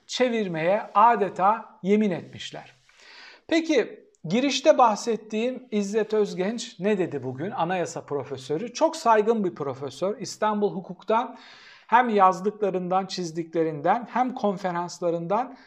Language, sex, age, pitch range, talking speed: Turkish, male, 60-79, 175-240 Hz, 95 wpm